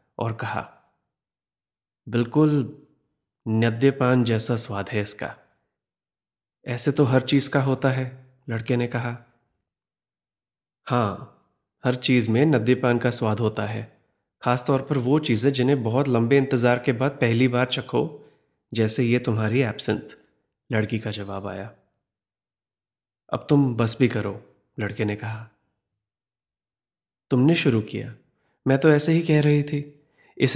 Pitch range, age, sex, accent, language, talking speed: 110-135 Hz, 30-49, male, native, Hindi, 130 wpm